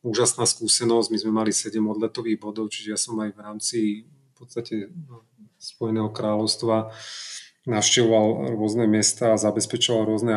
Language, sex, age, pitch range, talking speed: Slovak, male, 30-49, 110-120 Hz, 140 wpm